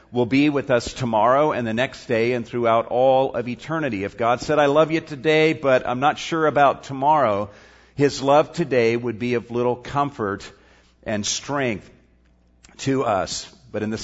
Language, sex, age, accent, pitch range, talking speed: English, male, 50-69, American, 110-145 Hz, 180 wpm